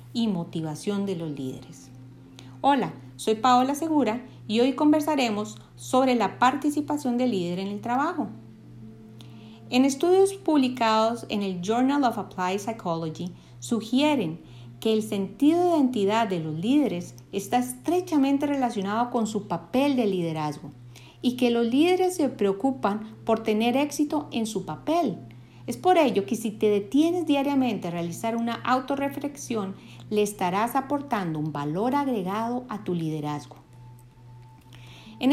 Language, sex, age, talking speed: Spanish, female, 40-59, 135 wpm